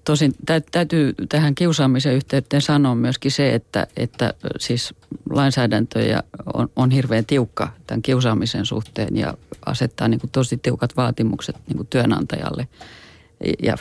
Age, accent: 40-59, native